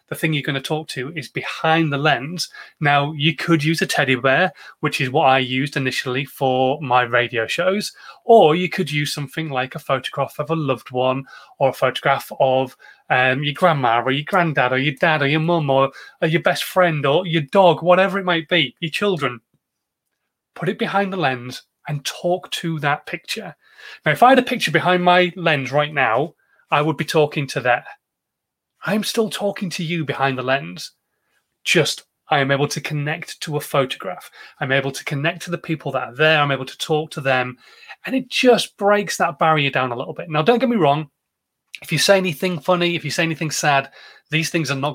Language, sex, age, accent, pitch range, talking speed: English, male, 30-49, British, 135-170 Hz, 210 wpm